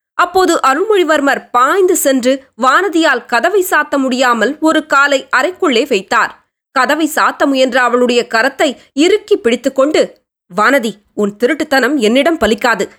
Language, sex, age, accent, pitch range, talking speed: Tamil, female, 20-39, native, 230-310 Hz, 110 wpm